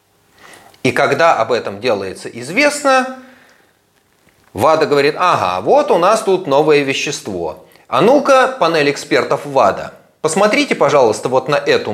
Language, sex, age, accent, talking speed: Russian, male, 30-49, native, 125 wpm